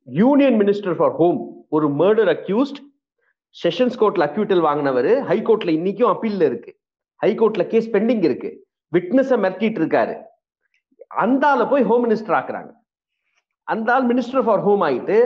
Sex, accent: male, native